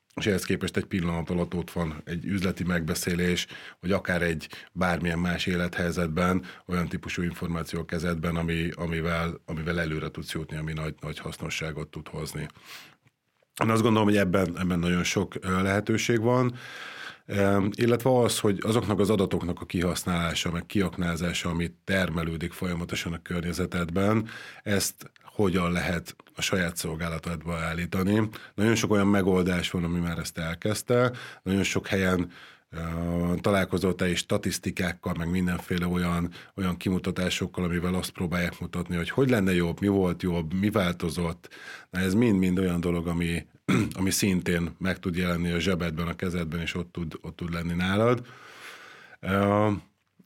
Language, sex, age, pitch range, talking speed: Hungarian, male, 30-49, 85-95 Hz, 150 wpm